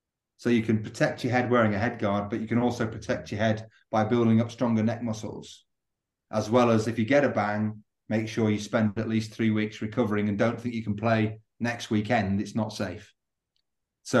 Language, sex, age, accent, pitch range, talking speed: English, male, 30-49, British, 110-125 Hz, 220 wpm